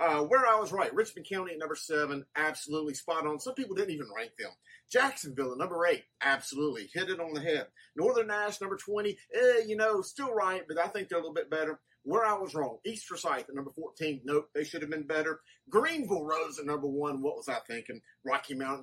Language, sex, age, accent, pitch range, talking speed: English, male, 30-49, American, 150-210 Hz, 230 wpm